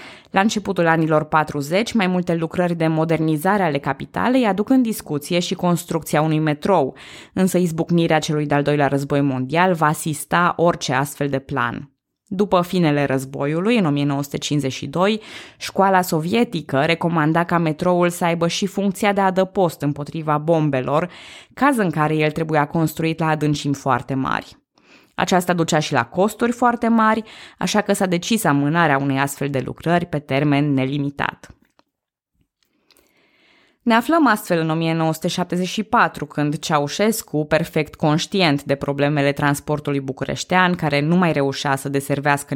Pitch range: 145-190 Hz